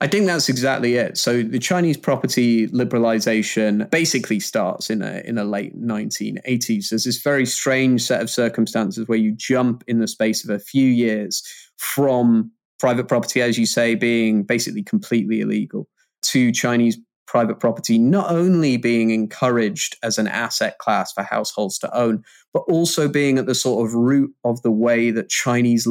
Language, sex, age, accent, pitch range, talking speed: English, male, 20-39, British, 110-130 Hz, 175 wpm